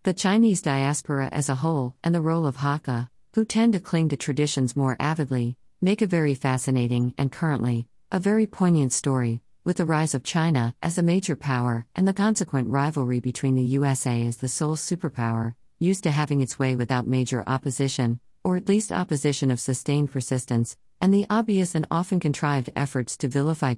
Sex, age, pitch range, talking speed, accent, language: female, 50-69, 130-170 Hz, 185 wpm, American, English